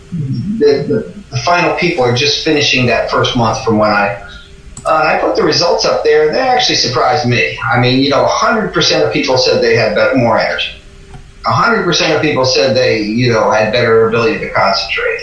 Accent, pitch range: American, 120-165 Hz